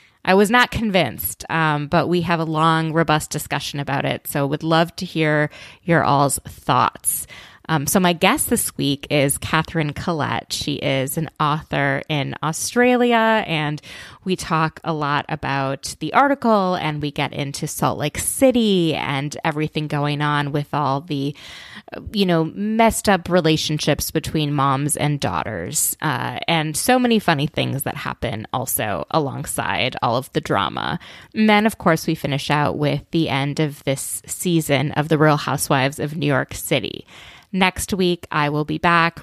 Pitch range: 145-190 Hz